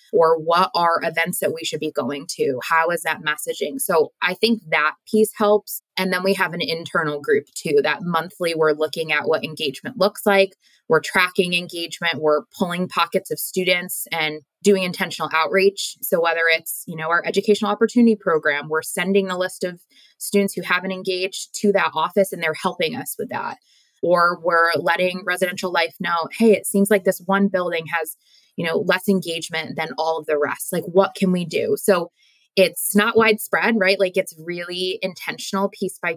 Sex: female